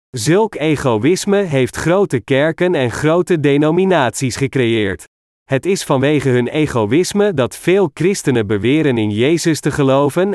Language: Dutch